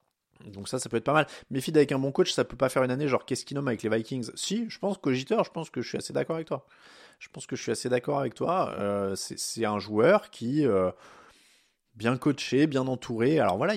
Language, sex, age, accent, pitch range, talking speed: French, male, 20-39, French, 105-140 Hz, 275 wpm